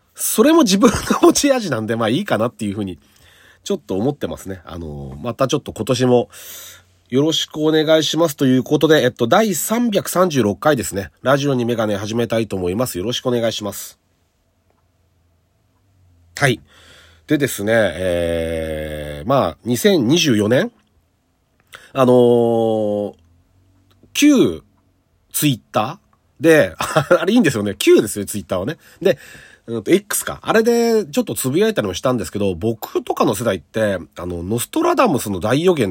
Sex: male